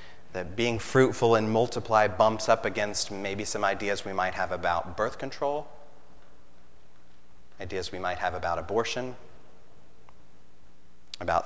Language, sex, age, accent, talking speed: English, male, 30-49, American, 125 wpm